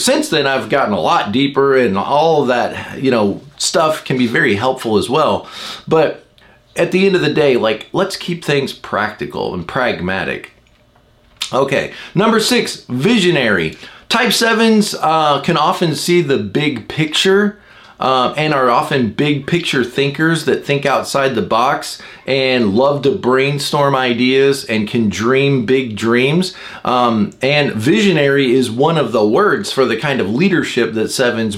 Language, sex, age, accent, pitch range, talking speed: English, male, 30-49, American, 130-185 Hz, 160 wpm